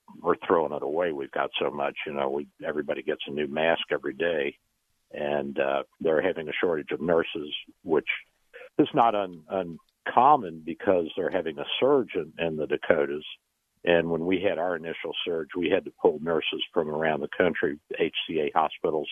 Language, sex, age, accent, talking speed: English, male, 60-79, American, 175 wpm